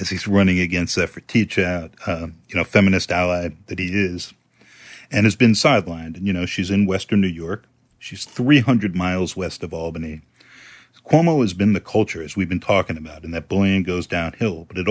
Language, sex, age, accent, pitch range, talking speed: English, male, 40-59, American, 95-125 Hz, 205 wpm